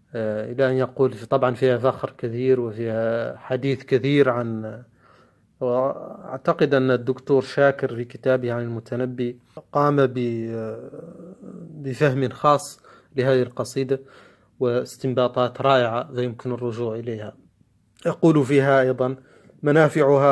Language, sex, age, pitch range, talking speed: Arabic, male, 30-49, 120-140 Hz, 100 wpm